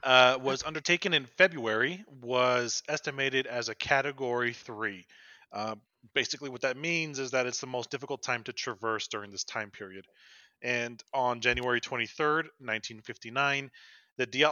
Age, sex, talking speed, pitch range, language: 30-49, male, 140 wpm, 115-140 Hz, English